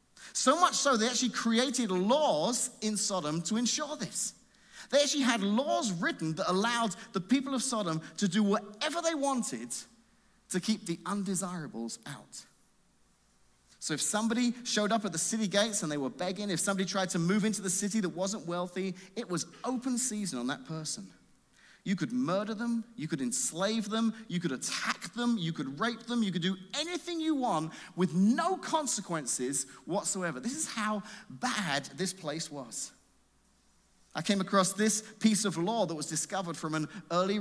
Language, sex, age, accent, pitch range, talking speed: English, male, 30-49, British, 180-235 Hz, 175 wpm